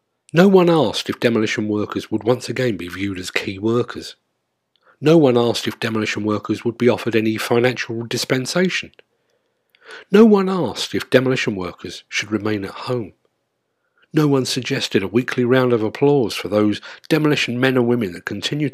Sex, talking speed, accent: male, 165 wpm, British